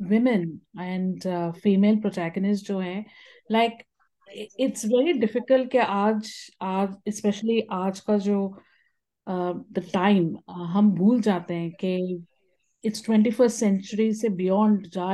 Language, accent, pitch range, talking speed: Hindi, native, 200-250 Hz, 105 wpm